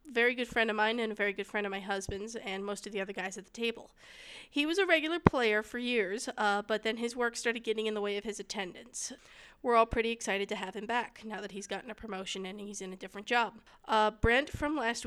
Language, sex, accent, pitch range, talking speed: English, female, American, 200-245 Hz, 265 wpm